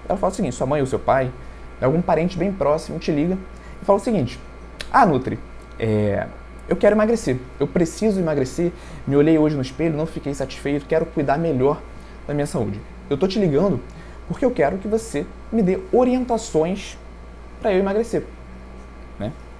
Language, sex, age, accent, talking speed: Portuguese, male, 20-39, Brazilian, 175 wpm